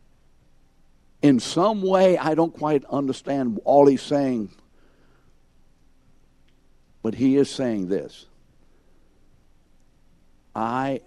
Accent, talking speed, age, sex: American, 85 wpm, 60-79, male